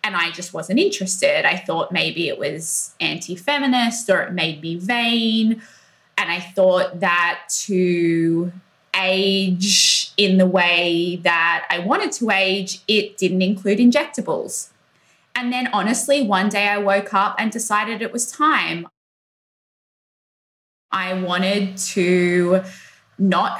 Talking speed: 130 wpm